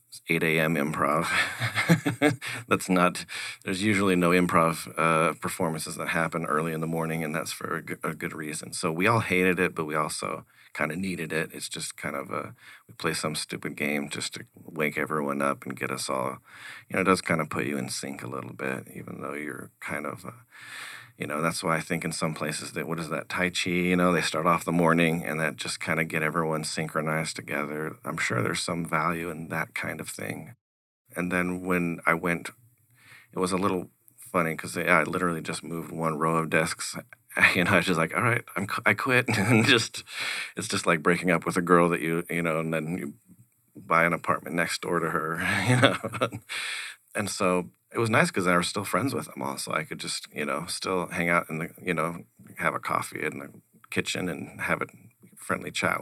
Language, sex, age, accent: English, male, 30-49, American